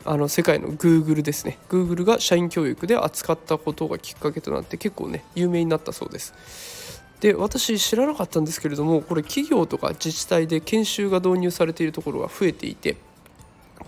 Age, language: 20-39, Japanese